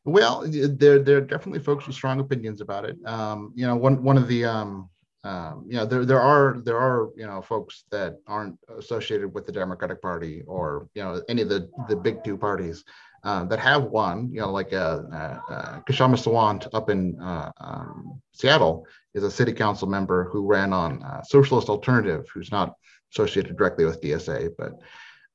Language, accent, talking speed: English, American, 190 wpm